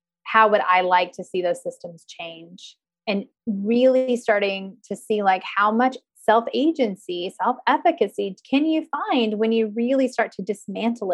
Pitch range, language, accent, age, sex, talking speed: 185-240 Hz, English, American, 30-49, female, 150 wpm